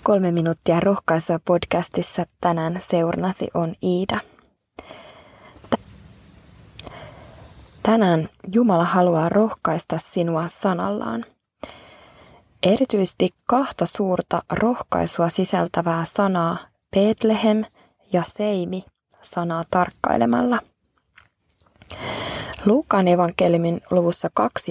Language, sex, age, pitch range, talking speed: Finnish, female, 20-39, 170-205 Hz, 70 wpm